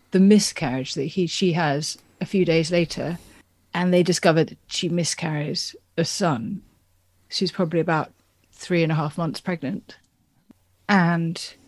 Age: 30-49